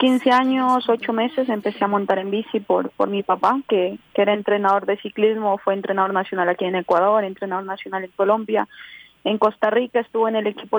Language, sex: Spanish, female